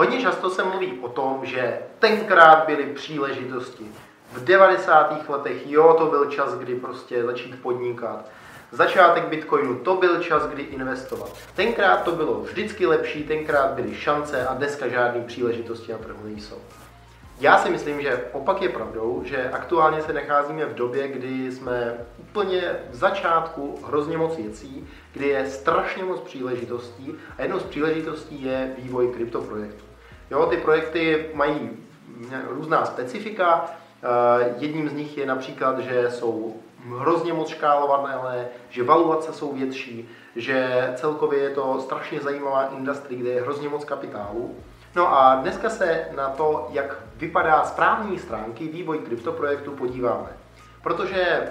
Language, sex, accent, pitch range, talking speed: Czech, male, native, 125-160 Hz, 140 wpm